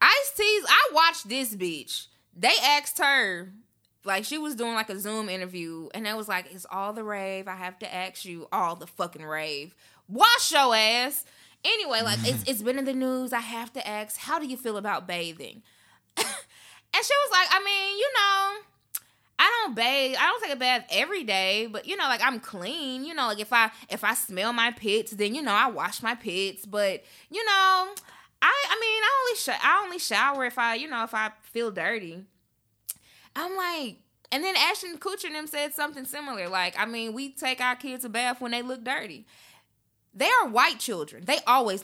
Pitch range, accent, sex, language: 200-300 Hz, American, female, English